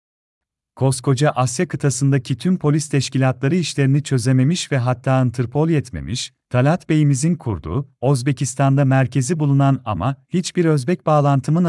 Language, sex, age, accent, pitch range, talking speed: Turkish, male, 40-59, native, 125-150 Hz, 115 wpm